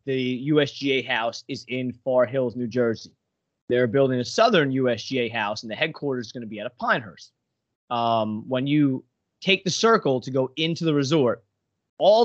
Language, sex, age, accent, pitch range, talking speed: English, male, 30-49, American, 120-155 Hz, 180 wpm